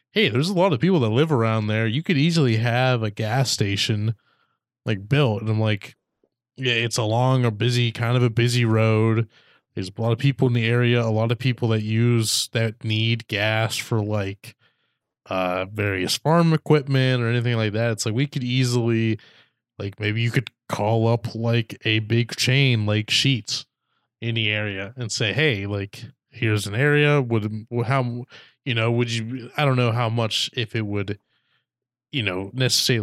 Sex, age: male, 20-39